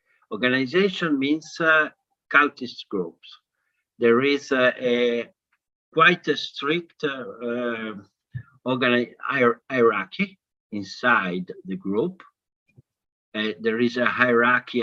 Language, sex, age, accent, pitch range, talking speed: English, male, 50-69, Italian, 110-135 Hz, 95 wpm